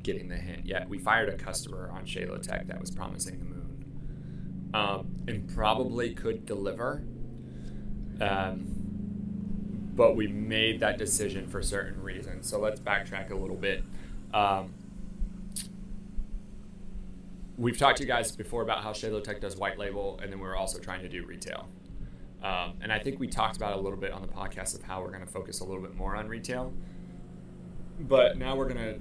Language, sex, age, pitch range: English, male, 20-39, 95-120 Hz